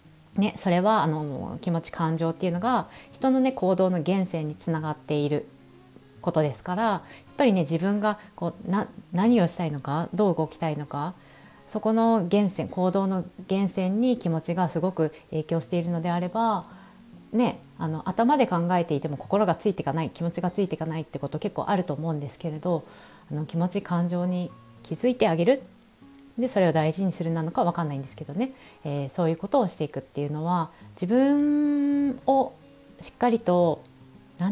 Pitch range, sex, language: 155-210 Hz, female, Japanese